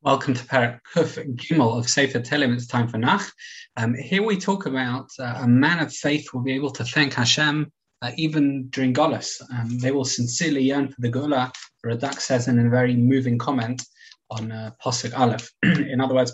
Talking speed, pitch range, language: 195 wpm, 120-150 Hz, English